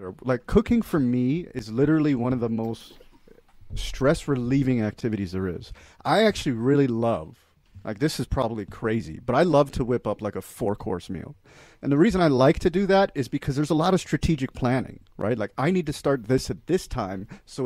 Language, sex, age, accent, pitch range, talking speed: English, male, 40-59, American, 105-145 Hz, 205 wpm